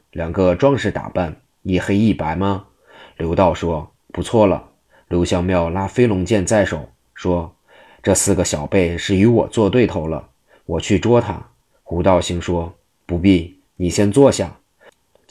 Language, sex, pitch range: Chinese, male, 90-100 Hz